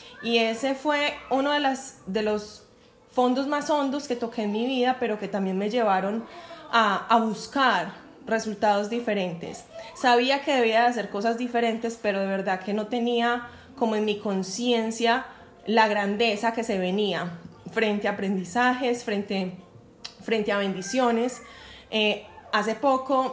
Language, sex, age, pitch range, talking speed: Spanish, female, 20-39, 210-255 Hz, 150 wpm